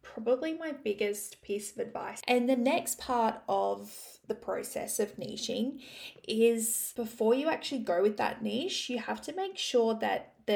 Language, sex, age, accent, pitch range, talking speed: English, female, 10-29, Australian, 205-265 Hz, 165 wpm